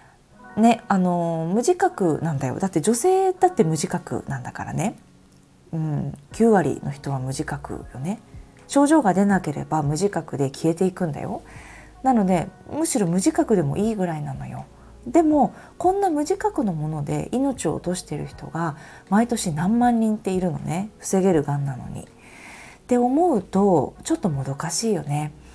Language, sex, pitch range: Japanese, female, 150-240 Hz